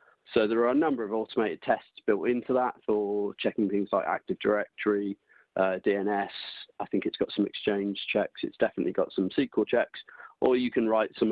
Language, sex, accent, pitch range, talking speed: English, male, British, 100-110 Hz, 195 wpm